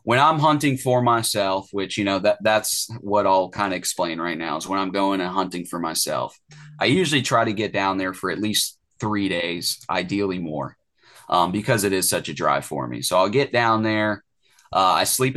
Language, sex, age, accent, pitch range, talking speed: English, male, 30-49, American, 95-110 Hz, 220 wpm